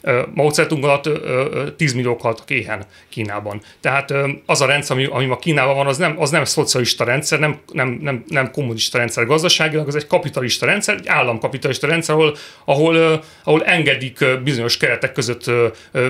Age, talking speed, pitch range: 40-59, 180 wpm, 120-155 Hz